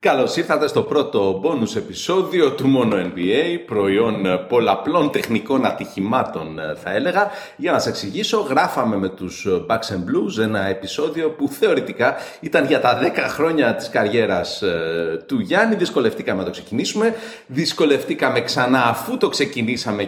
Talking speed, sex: 135 wpm, male